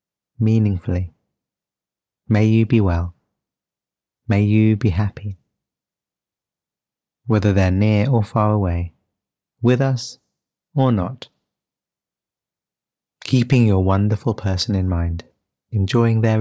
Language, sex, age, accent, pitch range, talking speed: English, male, 30-49, British, 95-110 Hz, 100 wpm